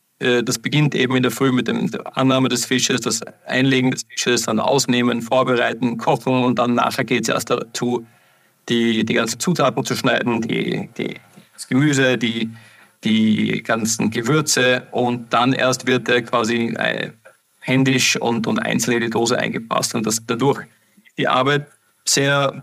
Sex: male